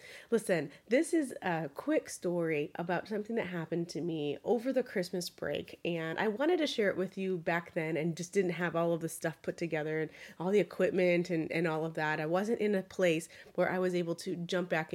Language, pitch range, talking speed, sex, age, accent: English, 170-225 Hz, 230 wpm, female, 30-49, American